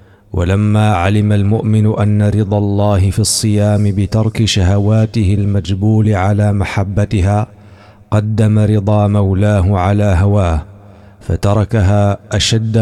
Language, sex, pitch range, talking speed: Arabic, male, 100-105 Hz, 95 wpm